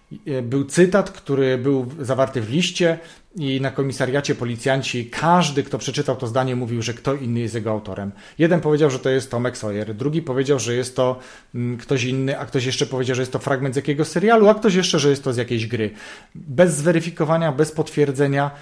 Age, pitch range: 40-59, 120-150 Hz